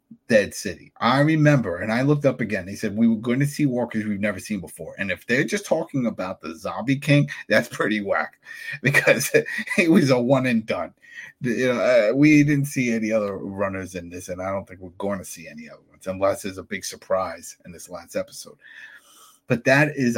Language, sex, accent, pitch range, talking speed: English, male, American, 100-150 Hz, 210 wpm